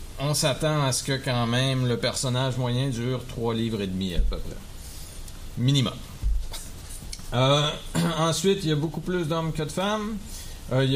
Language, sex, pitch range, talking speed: French, male, 115-150 Hz, 170 wpm